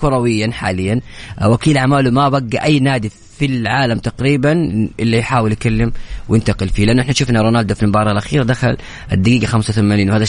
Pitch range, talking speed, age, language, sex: 115-165 Hz, 155 wpm, 20-39, Arabic, female